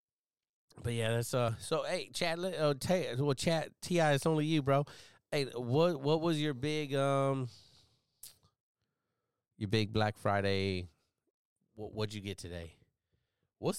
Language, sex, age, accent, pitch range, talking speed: English, male, 30-49, American, 95-120 Hz, 140 wpm